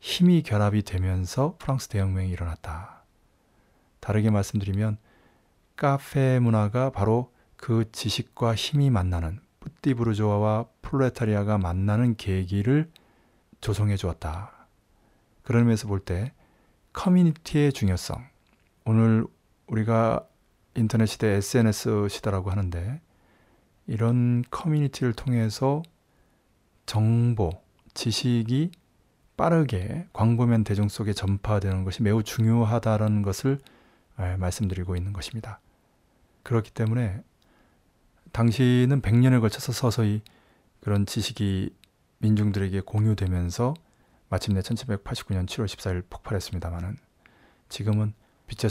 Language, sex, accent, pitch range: Korean, male, native, 100-120 Hz